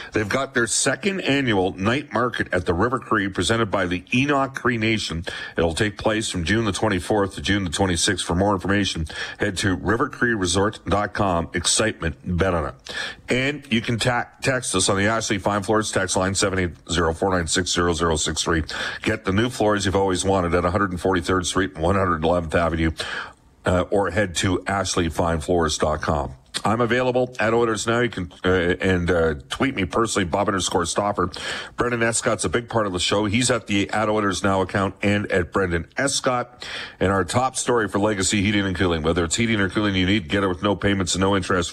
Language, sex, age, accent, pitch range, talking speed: English, male, 50-69, American, 90-115 Hz, 185 wpm